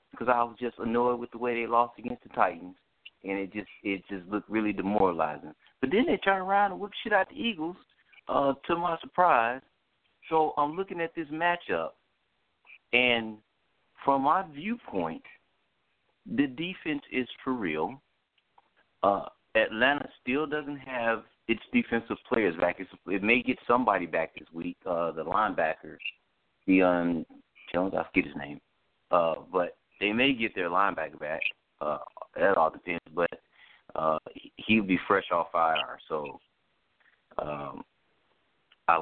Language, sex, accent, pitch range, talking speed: English, male, American, 110-155 Hz, 155 wpm